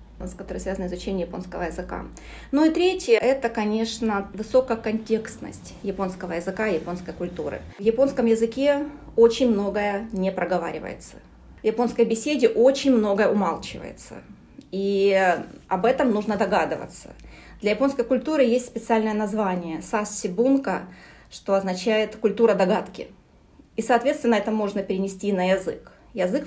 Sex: female